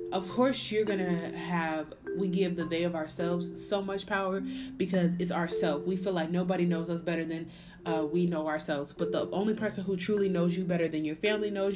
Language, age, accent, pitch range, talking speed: English, 20-39, American, 155-190 Hz, 220 wpm